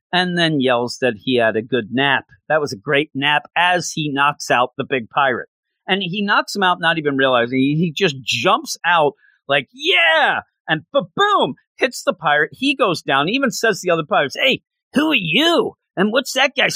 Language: English